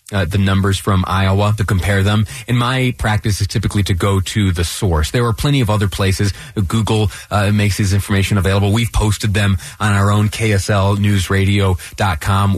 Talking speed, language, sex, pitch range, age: 175 wpm, English, male, 95-130 Hz, 30-49